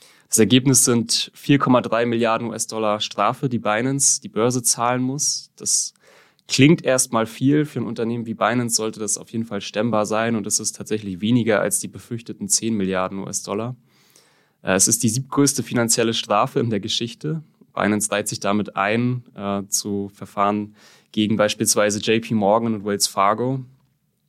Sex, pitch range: male, 100-120 Hz